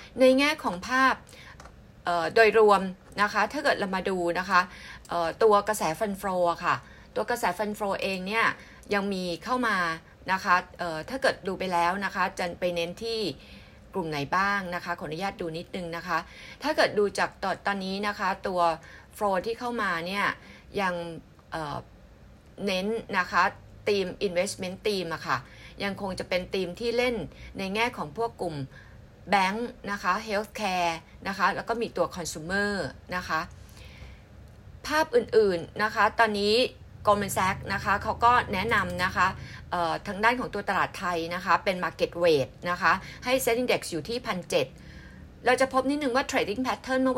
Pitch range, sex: 175-215 Hz, female